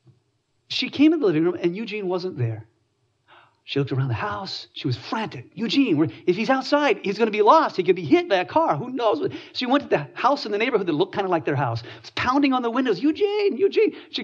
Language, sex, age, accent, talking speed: English, male, 40-59, American, 255 wpm